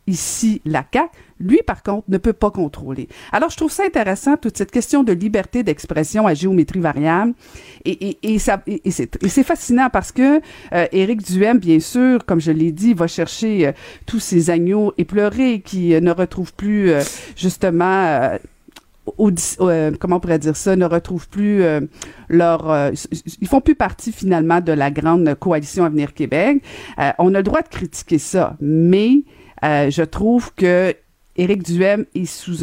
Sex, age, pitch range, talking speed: female, 50-69, 165-220 Hz, 190 wpm